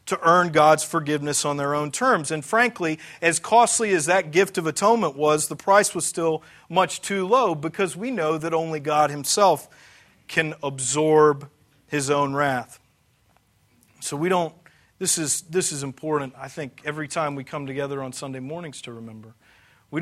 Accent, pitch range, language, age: American, 130-175 Hz, English, 40-59